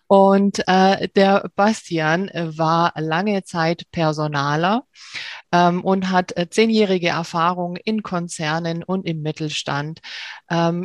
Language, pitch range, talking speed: German, 160-190 Hz, 105 wpm